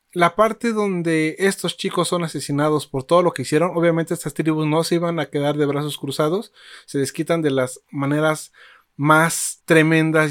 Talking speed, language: 175 wpm, Spanish